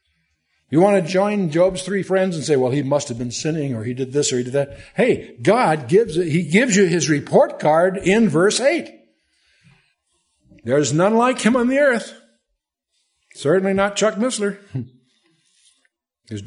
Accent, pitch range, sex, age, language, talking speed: American, 135-195 Hz, male, 60-79, English, 170 wpm